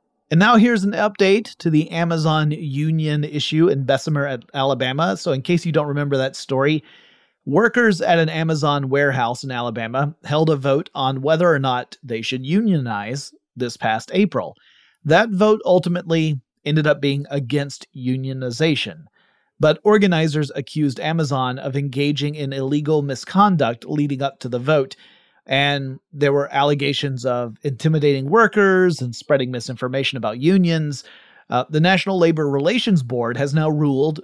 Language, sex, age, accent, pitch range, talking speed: English, male, 30-49, American, 130-160 Hz, 145 wpm